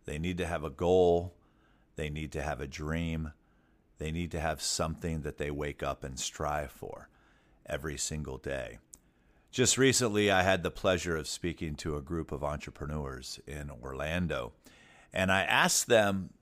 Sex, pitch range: male, 75-90 Hz